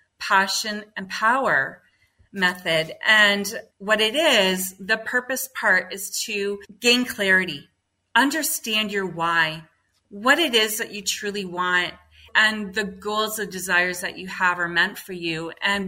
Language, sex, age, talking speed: English, female, 30-49, 145 wpm